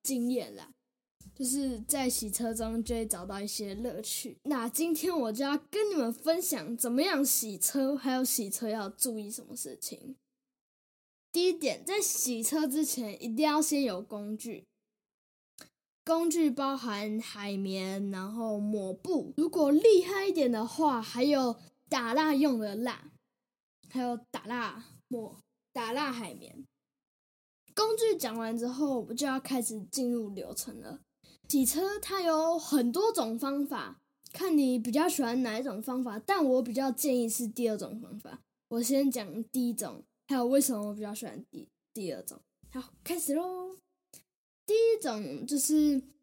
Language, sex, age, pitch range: Chinese, female, 10-29, 230-295 Hz